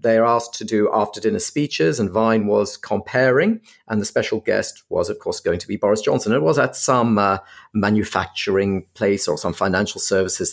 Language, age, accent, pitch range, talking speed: English, 40-59, British, 110-150 Hz, 190 wpm